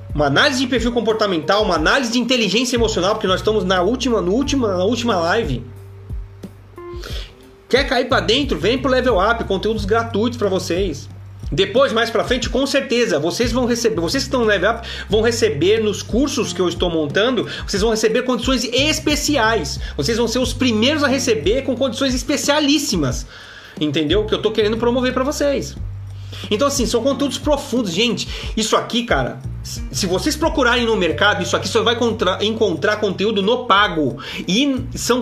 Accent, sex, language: Brazilian, male, Portuguese